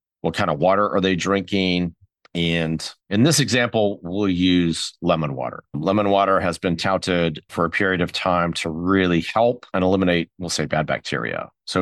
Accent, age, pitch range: American, 40-59, 80-100 Hz